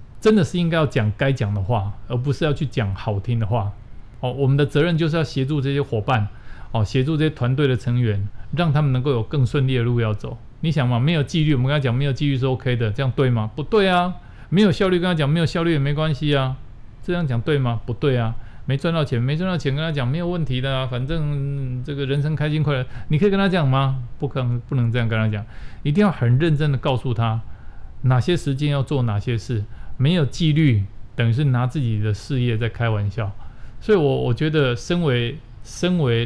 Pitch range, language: 115-145 Hz, Chinese